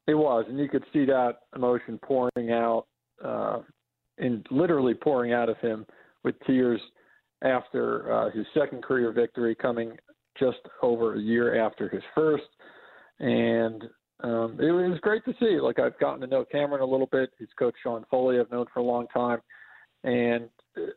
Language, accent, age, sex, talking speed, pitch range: English, American, 40-59, male, 170 wpm, 115-130 Hz